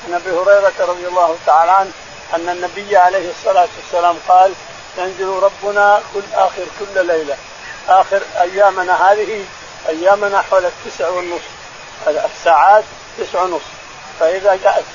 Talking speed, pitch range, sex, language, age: 125 wpm, 185-220 Hz, male, Arabic, 50-69